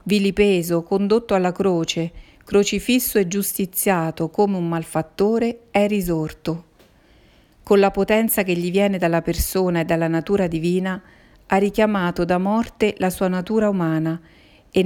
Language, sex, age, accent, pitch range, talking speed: Italian, female, 50-69, native, 170-200 Hz, 135 wpm